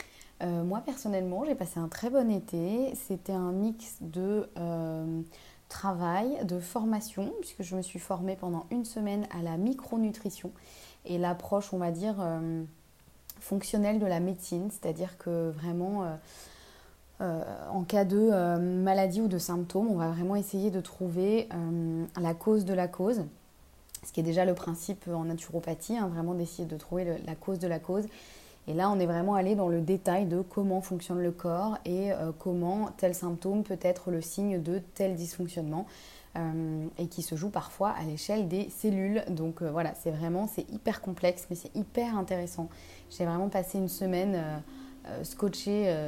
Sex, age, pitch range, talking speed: female, 20-39, 170-200 Hz, 170 wpm